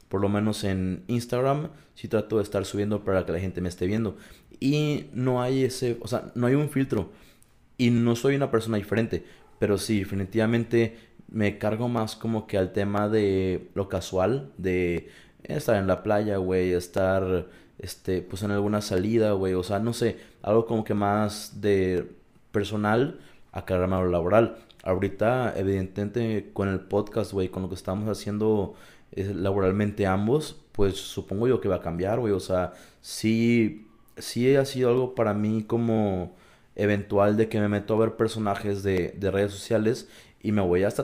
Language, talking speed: Spanish, 175 wpm